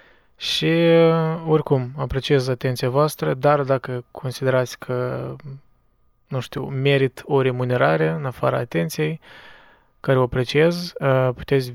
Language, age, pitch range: Romanian, 20-39, 125-145 Hz